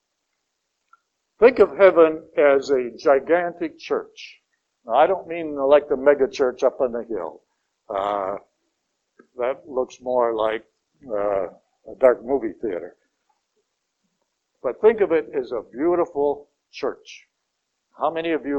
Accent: American